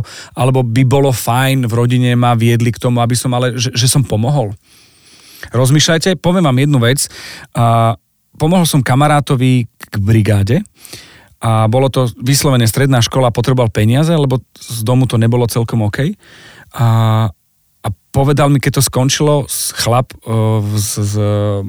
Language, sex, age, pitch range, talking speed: Slovak, male, 40-59, 115-135 Hz, 150 wpm